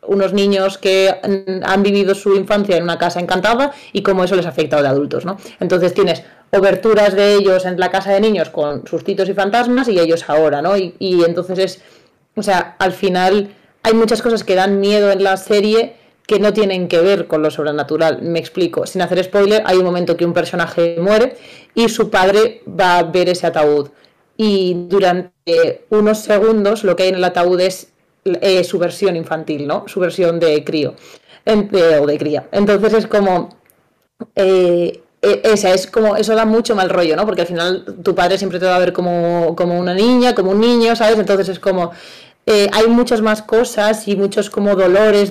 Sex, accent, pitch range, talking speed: female, Spanish, 175-210 Hz, 200 wpm